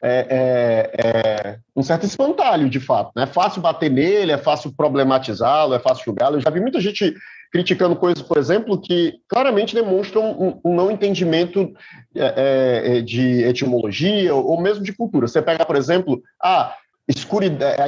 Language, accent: Portuguese, Brazilian